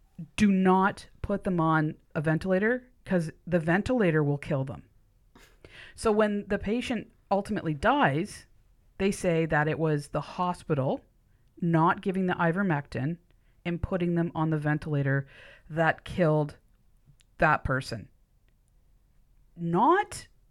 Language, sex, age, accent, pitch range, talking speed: English, female, 40-59, American, 140-190 Hz, 120 wpm